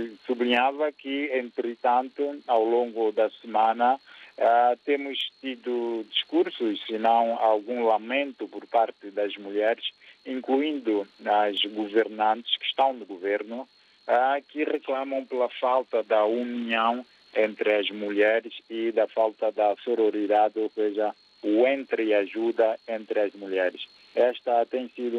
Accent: Brazilian